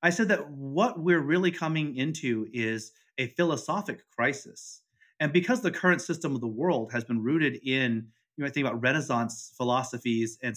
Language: English